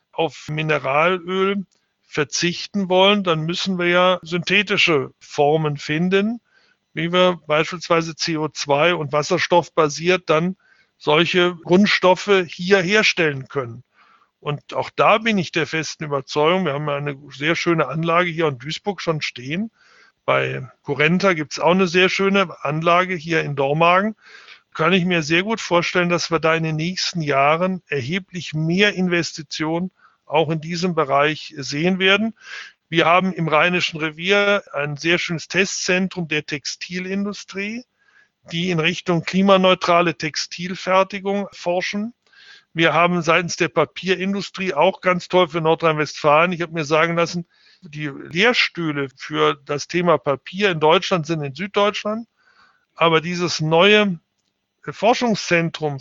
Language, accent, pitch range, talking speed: German, German, 155-190 Hz, 135 wpm